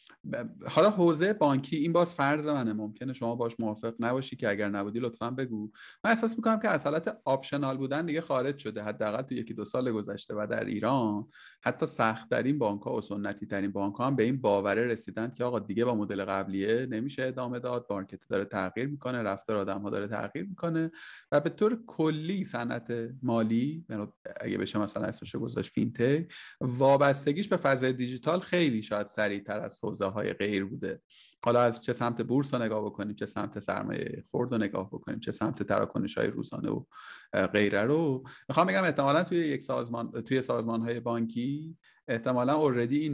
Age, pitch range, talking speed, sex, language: 30-49, 110-140 Hz, 175 wpm, male, Persian